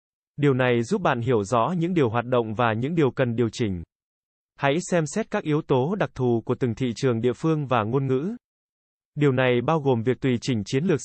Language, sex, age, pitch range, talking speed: Vietnamese, male, 20-39, 120-155 Hz, 230 wpm